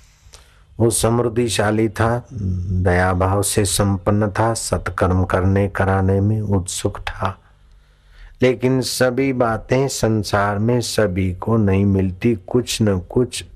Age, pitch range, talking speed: 60-79, 90-115 Hz, 115 wpm